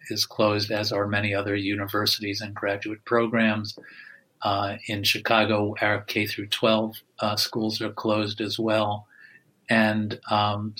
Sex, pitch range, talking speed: male, 105-115 Hz, 140 wpm